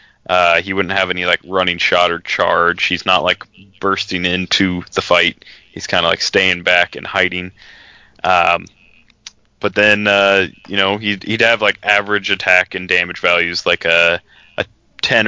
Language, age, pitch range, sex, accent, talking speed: English, 20-39, 95-110 Hz, male, American, 175 wpm